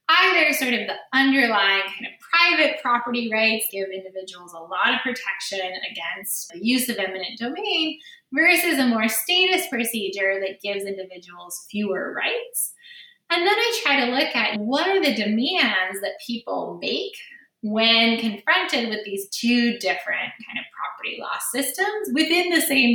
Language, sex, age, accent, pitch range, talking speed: English, female, 10-29, American, 195-305 Hz, 155 wpm